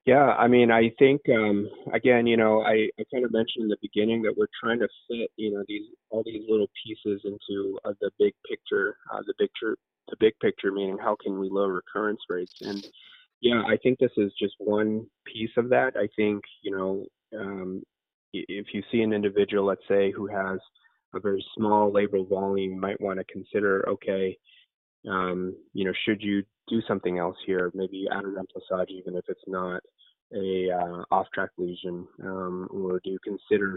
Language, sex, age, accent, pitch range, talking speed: English, male, 20-39, American, 95-120 Hz, 195 wpm